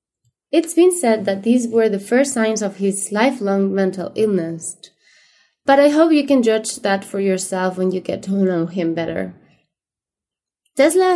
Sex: female